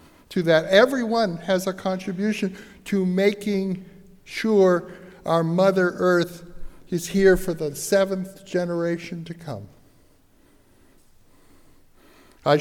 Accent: American